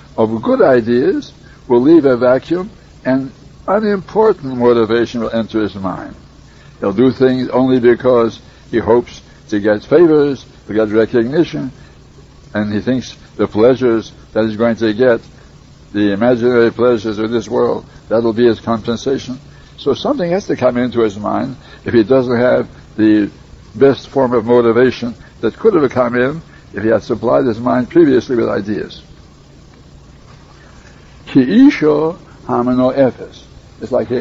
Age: 60-79